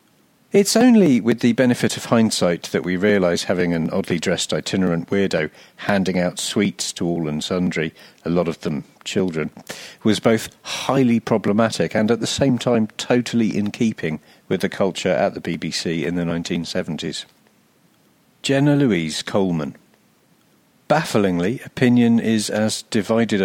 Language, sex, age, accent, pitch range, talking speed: English, male, 50-69, British, 90-115 Hz, 145 wpm